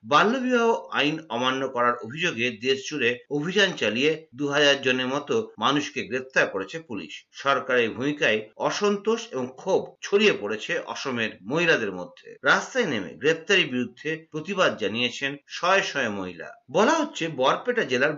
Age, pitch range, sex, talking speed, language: 50-69, 130-200 Hz, male, 45 wpm, Bengali